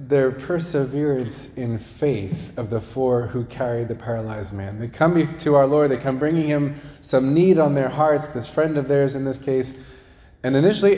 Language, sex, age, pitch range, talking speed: English, male, 30-49, 120-155 Hz, 190 wpm